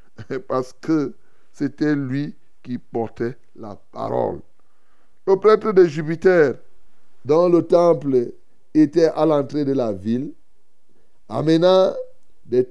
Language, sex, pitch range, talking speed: French, male, 130-190 Hz, 110 wpm